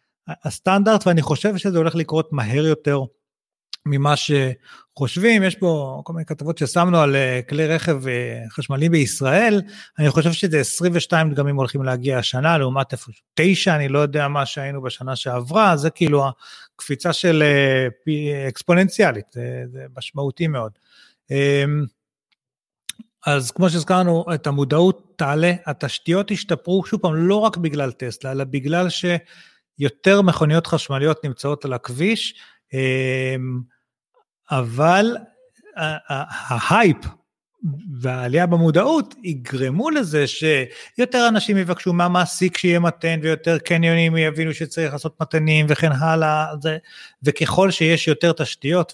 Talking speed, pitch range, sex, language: 120 wpm, 135-170 Hz, male, Hebrew